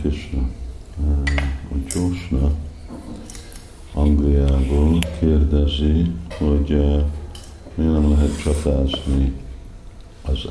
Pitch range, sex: 70-85 Hz, male